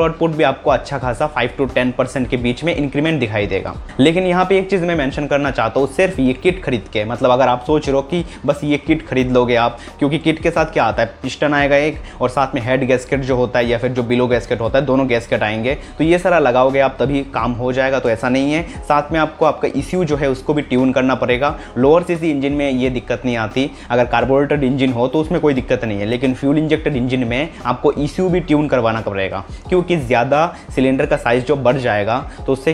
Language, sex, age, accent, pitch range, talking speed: Hindi, male, 20-39, native, 125-155 Hz, 80 wpm